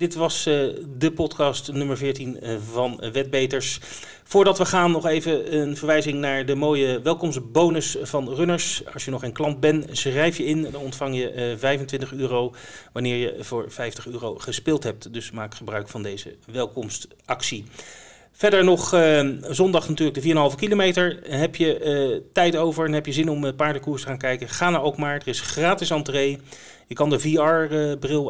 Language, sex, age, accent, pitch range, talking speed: Dutch, male, 30-49, Dutch, 120-155 Hz, 175 wpm